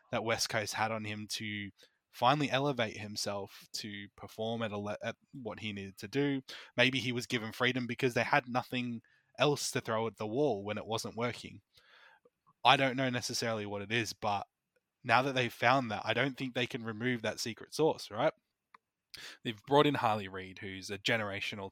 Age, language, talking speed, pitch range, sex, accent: 20-39, English, 195 wpm, 105-125 Hz, male, Australian